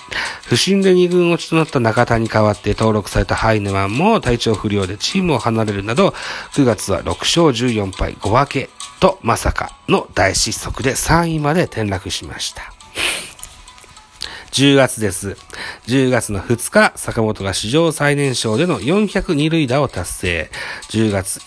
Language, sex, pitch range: Japanese, male, 105-150 Hz